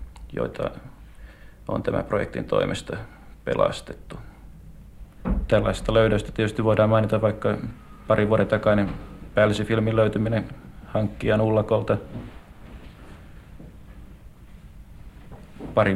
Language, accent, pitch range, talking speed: Finnish, native, 100-110 Hz, 80 wpm